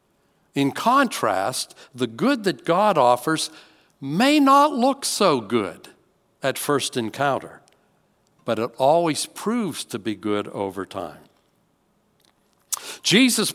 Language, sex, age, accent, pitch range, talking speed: English, male, 60-79, American, 125-175 Hz, 110 wpm